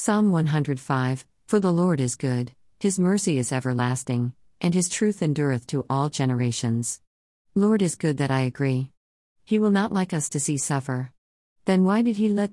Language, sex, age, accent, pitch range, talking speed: English, female, 50-69, American, 130-165 Hz, 175 wpm